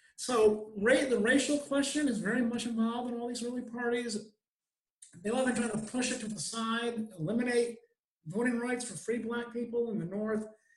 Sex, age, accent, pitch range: male, 50-69, American, 200-240 Hz